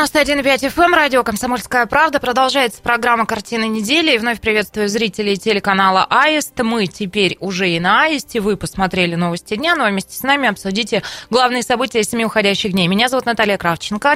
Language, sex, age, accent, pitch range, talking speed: Russian, female, 20-39, native, 205-275 Hz, 165 wpm